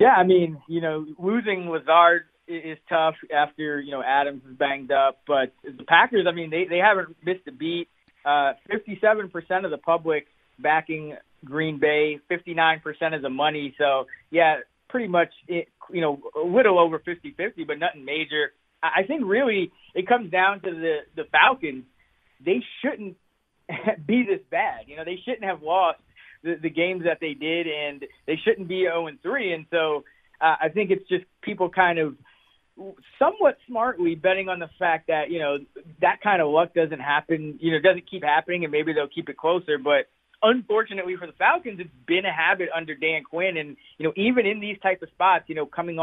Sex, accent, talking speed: male, American, 190 wpm